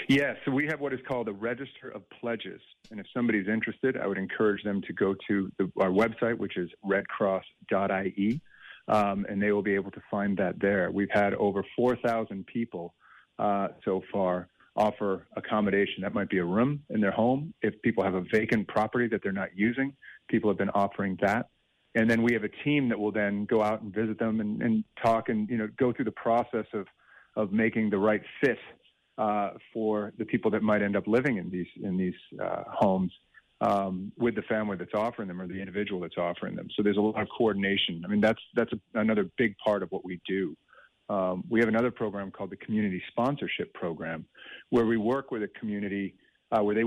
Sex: male